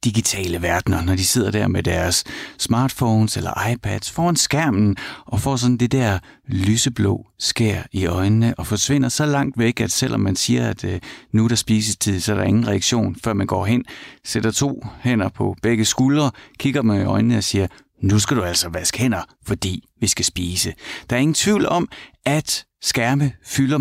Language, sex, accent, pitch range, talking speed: Danish, male, native, 100-130 Hz, 190 wpm